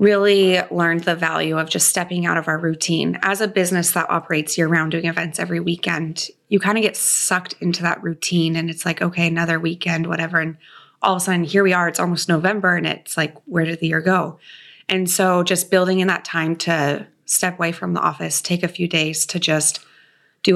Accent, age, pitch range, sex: American, 20-39, 160-180 Hz, female